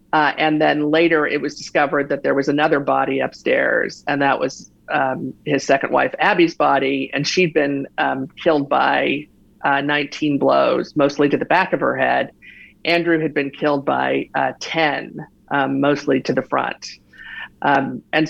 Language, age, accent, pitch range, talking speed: English, 50-69, American, 140-170 Hz, 170 wpm